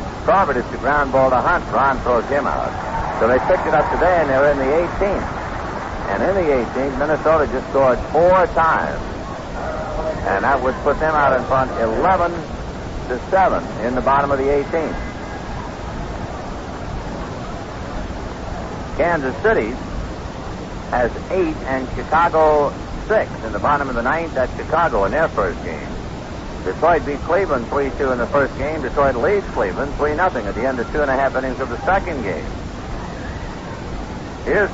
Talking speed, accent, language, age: 160 wpm, American, English, 60-79